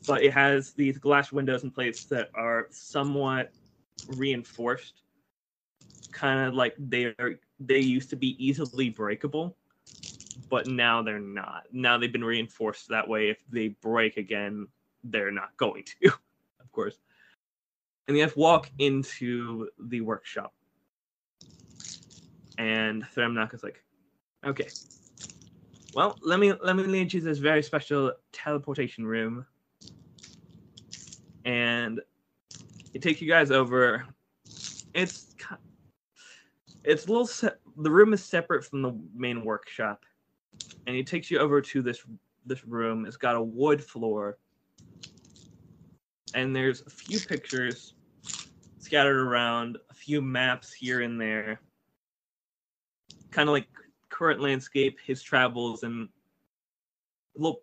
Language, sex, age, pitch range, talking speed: English, male, 20-39, 115-145 Hz, 125 wpm